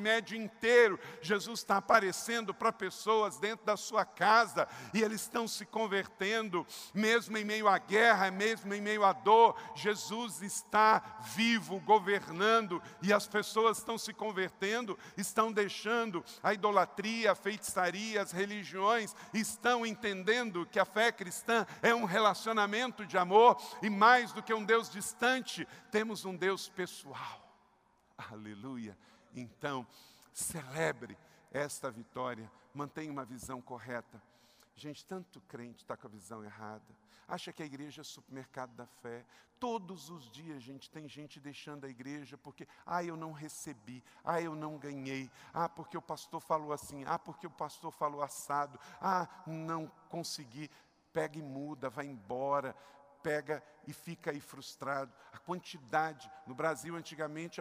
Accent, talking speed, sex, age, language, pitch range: Brazilian, 145 wpm, male, 60-79, Portuguese, 145-210 Hz